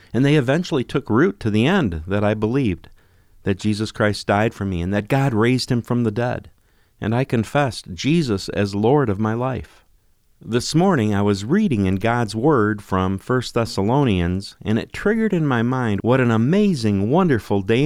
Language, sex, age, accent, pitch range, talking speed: English, male, 50-69, American, 100-135 Hz, 190 wpm